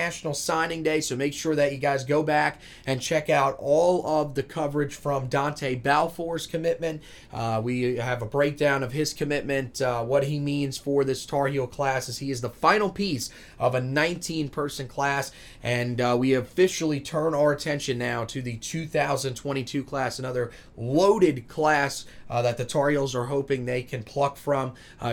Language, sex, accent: English, male, American